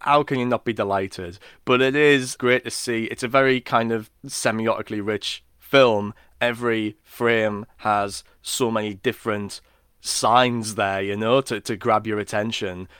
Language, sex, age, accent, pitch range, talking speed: English, male, 20-39, British, 100-115 Hz, 160 wpm